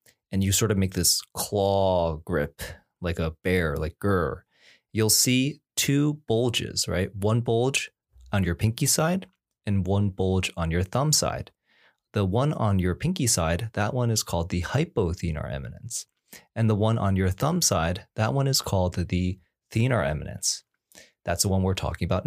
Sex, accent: male, American